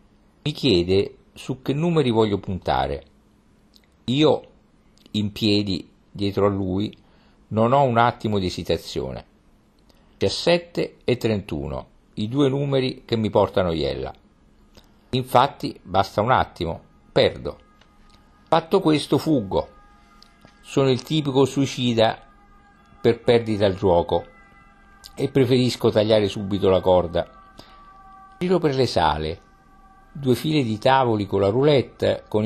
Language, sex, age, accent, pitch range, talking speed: Italian, male, 50-69, native, 100-135 Hz, 115 wpm